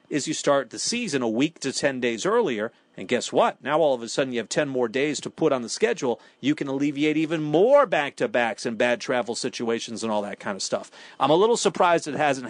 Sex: male